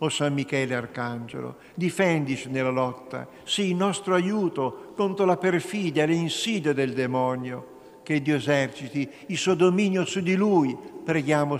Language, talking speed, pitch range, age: Italian, 145 wpm, 135-175 Hz, 50-69